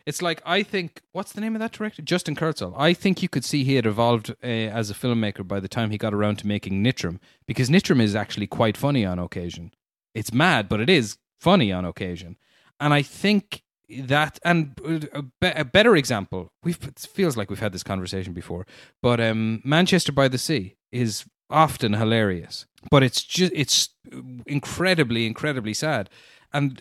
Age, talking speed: 30-49, 185 wpm